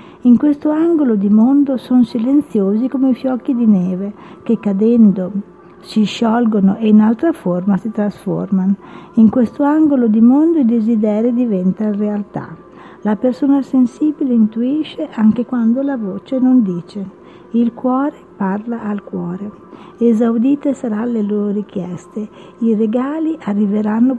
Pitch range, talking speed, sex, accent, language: 200-255 Hz, 135 wpm, female, native, Italian